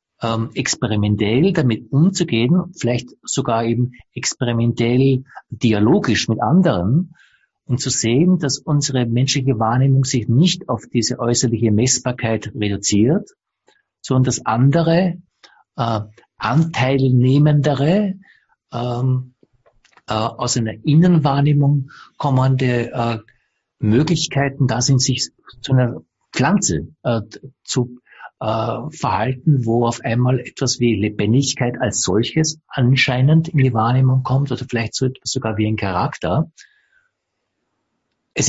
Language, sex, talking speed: English, male, 110 wpm